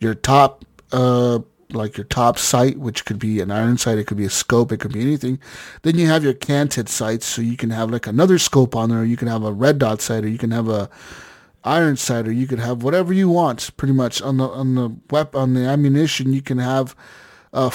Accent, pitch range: American, 120-150 Hz